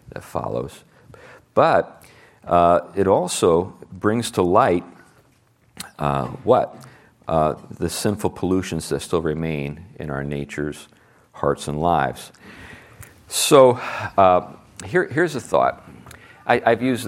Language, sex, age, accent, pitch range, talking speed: English, male, 50-69, American, 75-100 Hz, 115 wpm